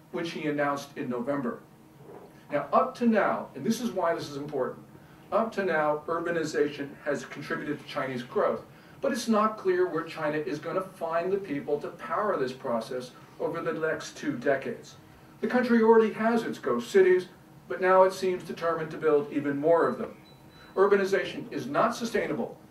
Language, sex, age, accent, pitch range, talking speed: English, male, 50-69, American, 150-200 Hz, 175 wpm